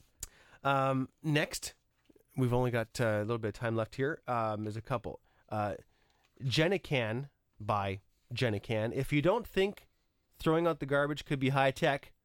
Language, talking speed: English, 160 wpm